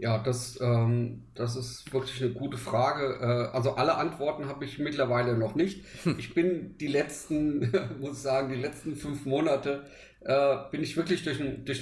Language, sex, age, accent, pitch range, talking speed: German, male, 50-69, German, 120-145 Hz, 185 wpm